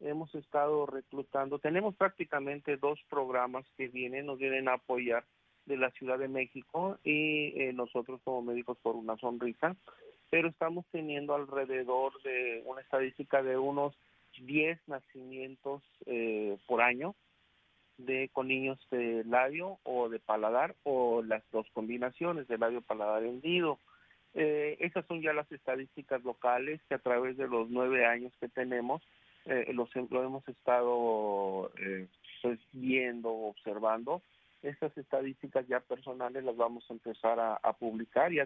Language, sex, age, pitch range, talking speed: English, male, 40-59, 120-140 Hz, 140 wpm